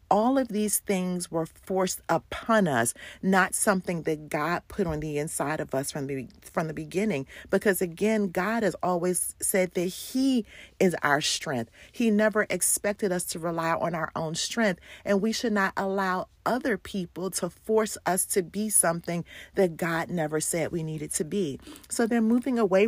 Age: 40-59